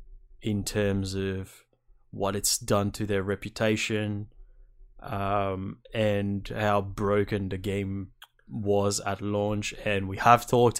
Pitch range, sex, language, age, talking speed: 105-120 Hz, male, English, 20-39, 120 wpm